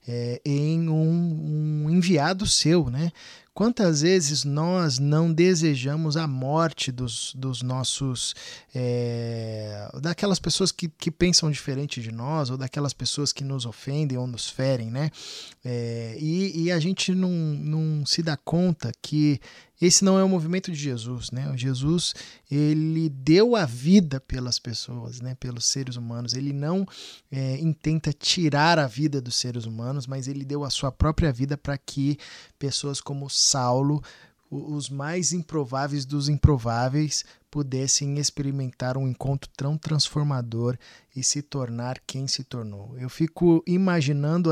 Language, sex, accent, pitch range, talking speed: Portuguese, male, Brazilian, 130-160 Hz, 145 wpm